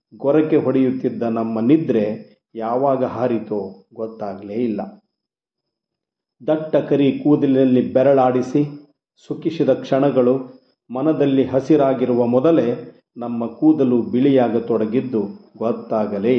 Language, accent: Kannada, native